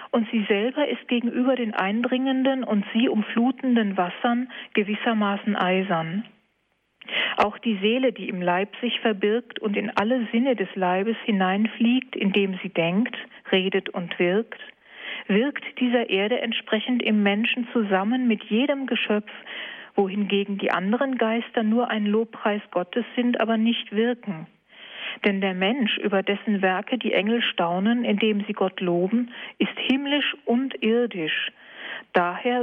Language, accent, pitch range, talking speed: German, German, 200-240 Hz, 135 wpm